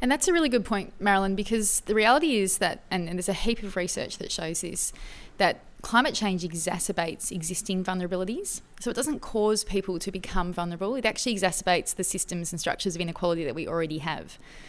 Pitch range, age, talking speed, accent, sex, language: 175-210 Hz, 20-39, 200 wpm, Australian, female, English